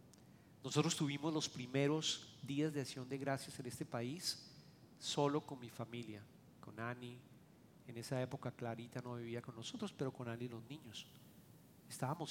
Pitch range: 125-165 Hz